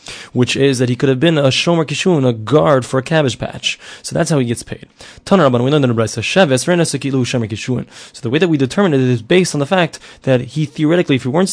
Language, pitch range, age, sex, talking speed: English, 130-165 Hz, 20-39, male, 210 wpm